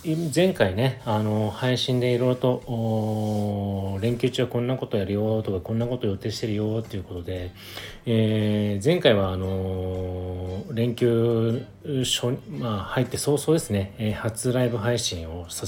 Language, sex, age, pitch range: Japanese, male, 40-59, 95-115 Hz